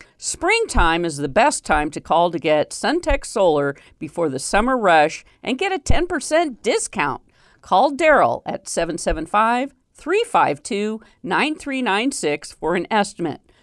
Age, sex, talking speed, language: 50-69, female, 130 wpm, English